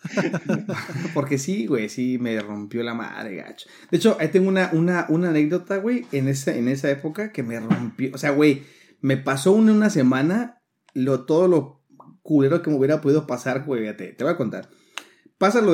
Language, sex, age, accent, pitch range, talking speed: Spanish, male, 30-49, Mexican, 125-165 Hz, 190 wpm